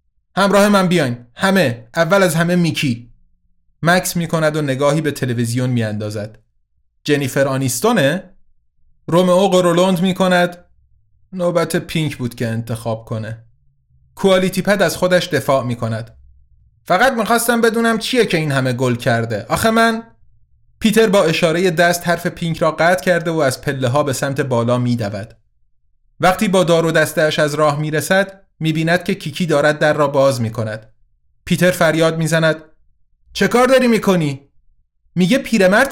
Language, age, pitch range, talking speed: Persian, 30-49, 120-180 Hz, 145 wpm